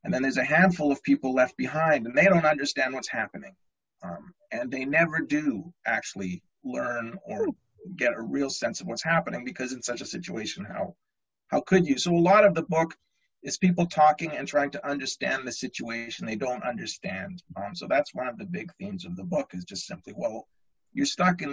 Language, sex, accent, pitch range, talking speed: English, male, American, 120-175 Hz, 210 wpm